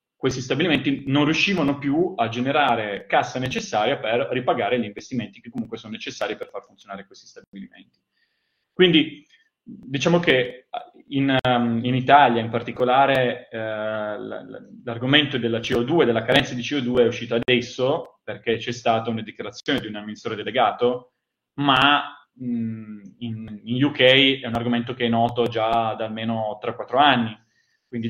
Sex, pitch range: male, 115-135 Hz